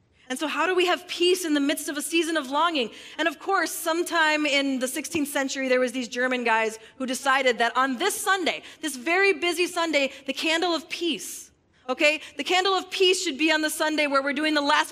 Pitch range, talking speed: 230-310 Hz, 230 wpm